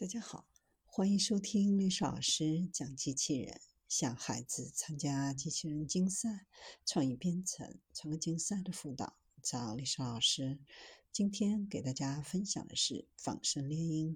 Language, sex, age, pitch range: Chinese, female, 50-69, 145-200 Hz